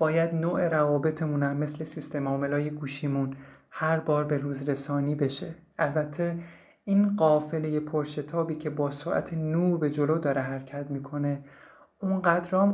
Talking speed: 125 wpm